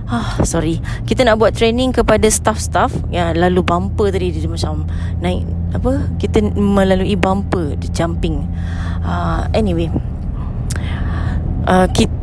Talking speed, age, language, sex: 125 wpm, 20-39, English, female